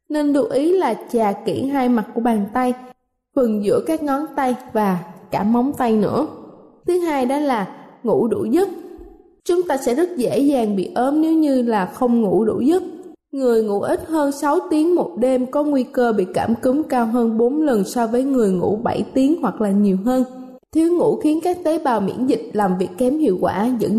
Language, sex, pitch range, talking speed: Vietnamese, female, 220-285 Hz, 215 wpm